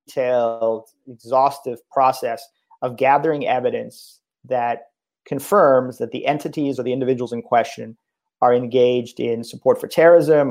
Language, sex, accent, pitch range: English, male, American, 120-145 Hz